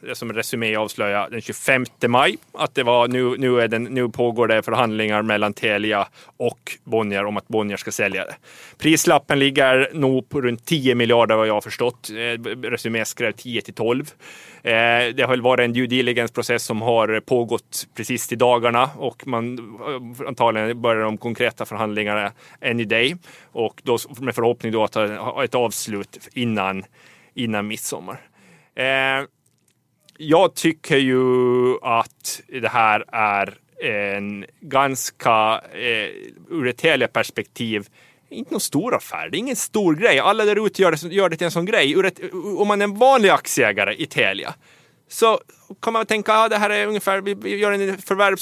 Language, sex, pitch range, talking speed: Swedish, male, 115-170 Hz, 160 wpm